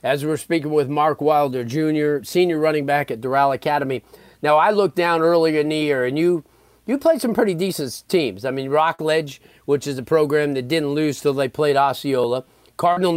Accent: American